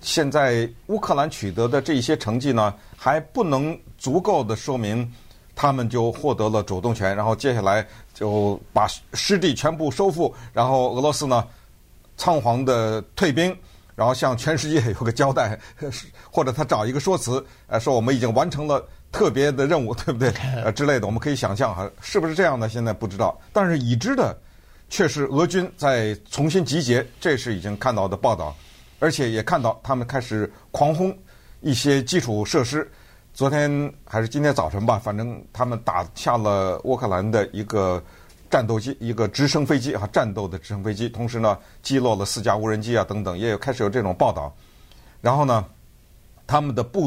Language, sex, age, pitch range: Chinese, male, 50-69, 105-140 Hz